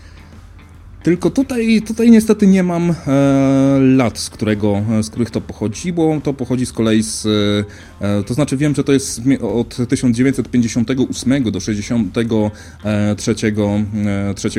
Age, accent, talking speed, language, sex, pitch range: 30-49, native, 125 wpm, Polish, male, 100-140 Hz